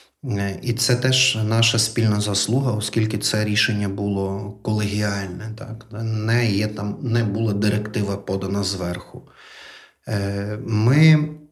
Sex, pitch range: male, 100-115 Hz